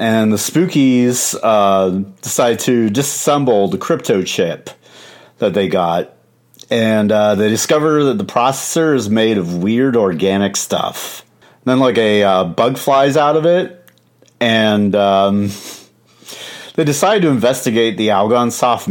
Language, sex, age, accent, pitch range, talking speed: English, male, 30-49, American, 100-140 Hz, 140 wpm